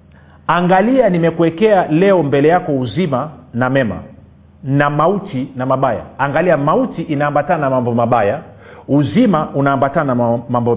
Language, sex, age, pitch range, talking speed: Swahili, male, 40-59, 140-195 Hz, 125 wpm